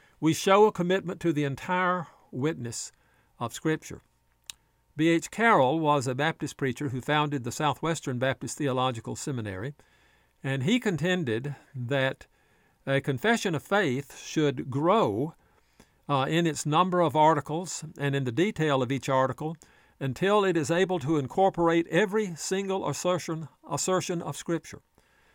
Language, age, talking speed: English, 60-79, 135 wpm